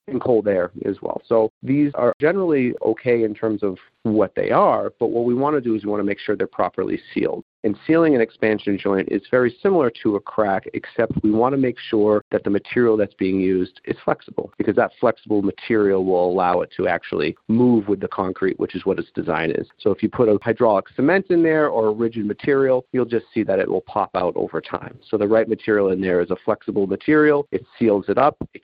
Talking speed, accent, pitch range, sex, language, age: 235 wpm, American, 100-125 Hz, male, English, 40-59